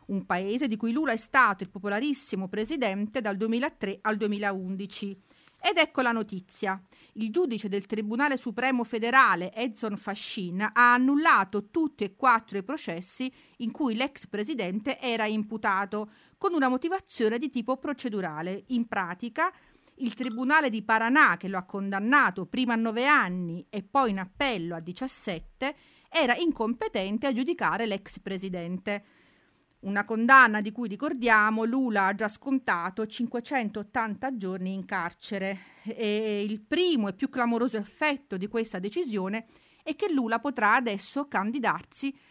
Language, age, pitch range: Italian, 40-59, 195-260 Hz